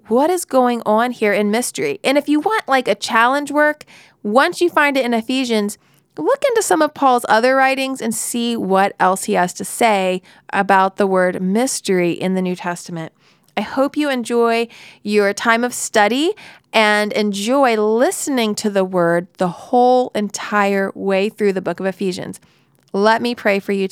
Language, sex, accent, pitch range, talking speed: English, female, American, 200-260 Hz, 180 wpm